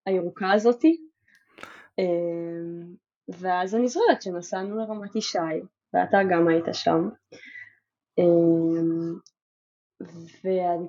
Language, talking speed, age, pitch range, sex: Hebrew, 70 wpm, 10-29, 185-255 Hz, female